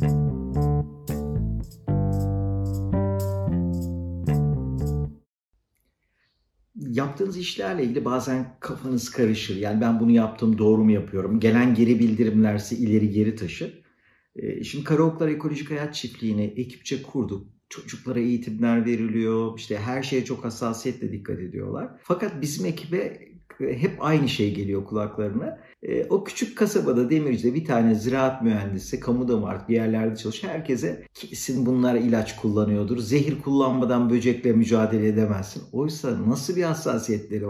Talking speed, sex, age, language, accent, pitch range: 115 wpm, male, 50-69, Turkish, native, 105-140 Hz